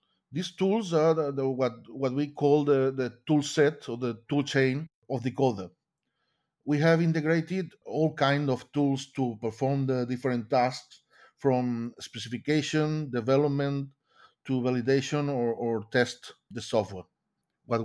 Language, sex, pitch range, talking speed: English, male, 120-160 Hz, 145 wpm